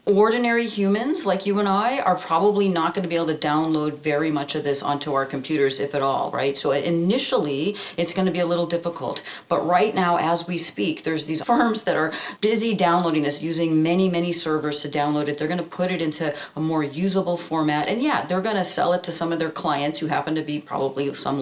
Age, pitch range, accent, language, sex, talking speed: 40-59, 150-180 Hz, American, English, female, 235 wpm